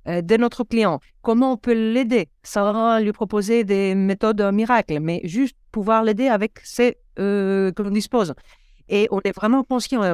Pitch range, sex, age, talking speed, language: 190-245 Hz, female, 50-69, 180 wpm, French